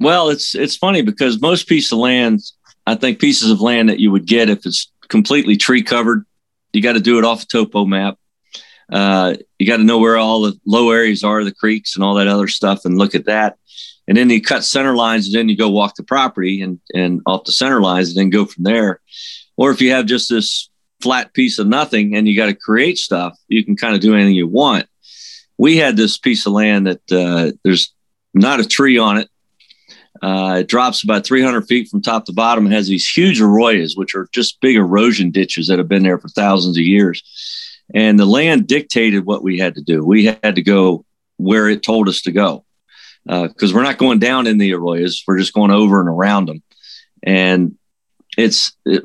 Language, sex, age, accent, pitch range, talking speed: English, male, 50-69, American, 95-115 Hz, 225 wpm